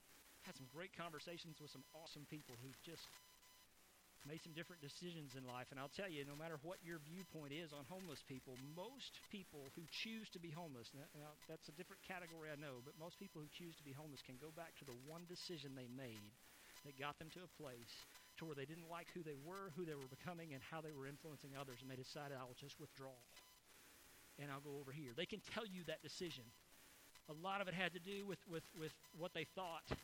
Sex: male